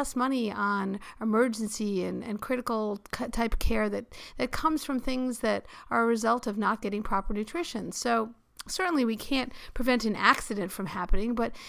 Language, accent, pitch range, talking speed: English, American, 210-255 Hz, 170 wpm